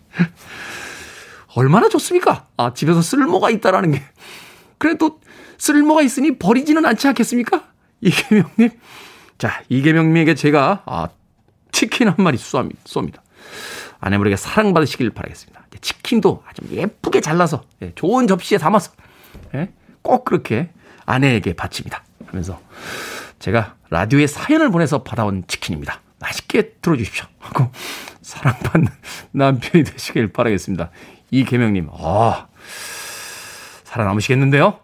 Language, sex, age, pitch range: Korean, male, 40-59, 125-210 Hz